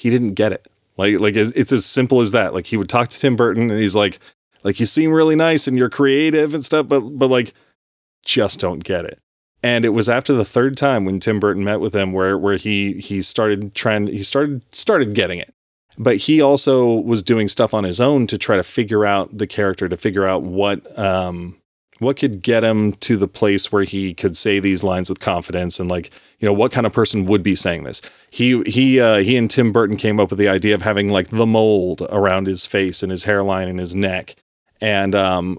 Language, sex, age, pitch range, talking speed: English, male, 30-49, 95-120 Hz, 235 wpm